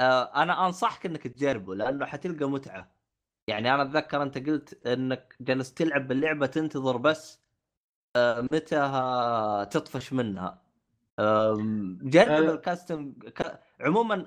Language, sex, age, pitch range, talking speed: Arabic, male, 20-39, 125-165 Hz, 100 wpm